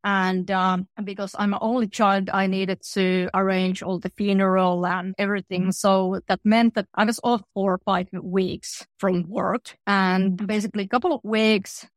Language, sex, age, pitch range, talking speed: English, female, 30-49, 185-205 Hz, 170 wpm